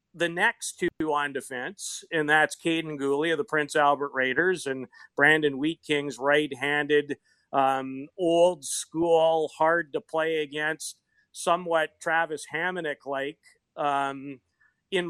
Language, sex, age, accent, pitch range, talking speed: English, male, 40-59, American, 145-175 Hz, 105 wpm